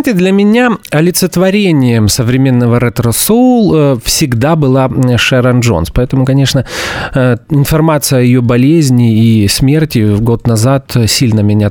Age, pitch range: 30-49, 115-155 Hz